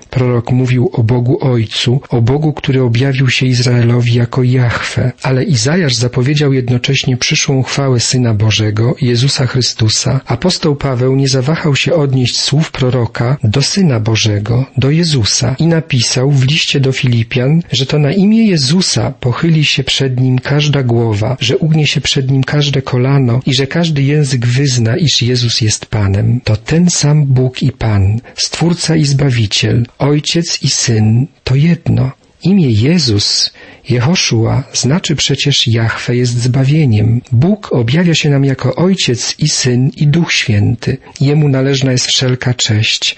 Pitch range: 120-145 Hz